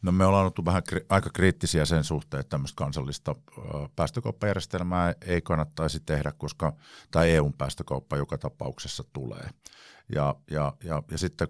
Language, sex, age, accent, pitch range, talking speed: Finnish, male, 50-69, native, 70-80 Hz, 135 wpm